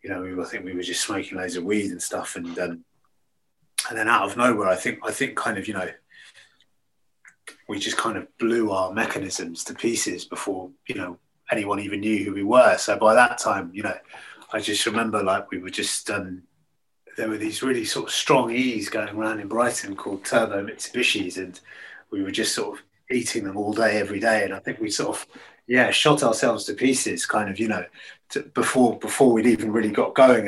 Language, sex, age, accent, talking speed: English, male, 30-49, British, 220 wpm